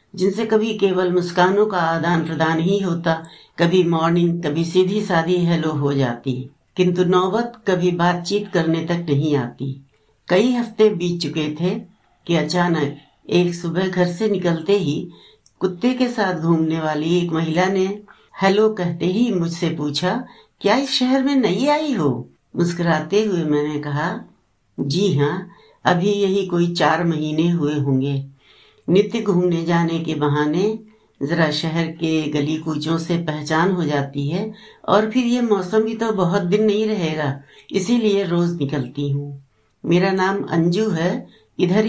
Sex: female